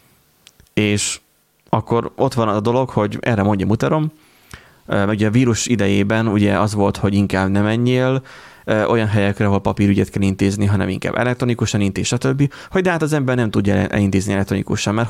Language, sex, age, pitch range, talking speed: Hungarian, male, 30-49, 100-120 Hz, 170 wpm